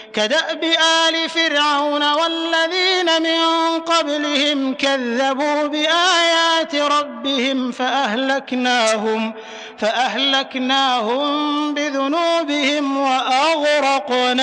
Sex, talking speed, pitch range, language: male, 55 wpm, 250-295 Hz, Indonesian